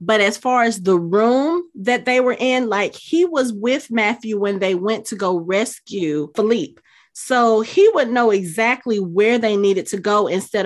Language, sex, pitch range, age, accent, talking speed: English, female, 180-230 Hz, 30-49, American, 185 wpm